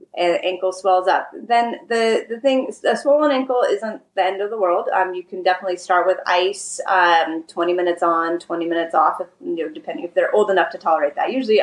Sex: female